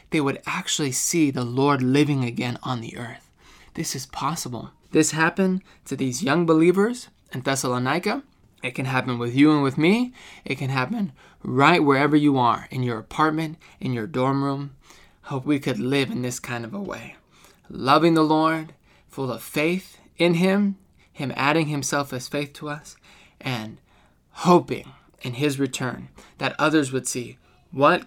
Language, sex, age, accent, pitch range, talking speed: English, male, 20-39, American, 125-155 Hz, 165 wpm